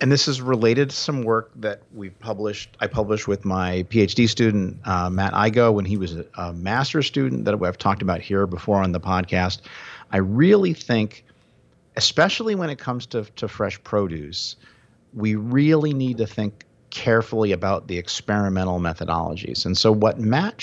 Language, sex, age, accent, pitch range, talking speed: English, male, 50-69, American, 90-120 Hz, 175 wpm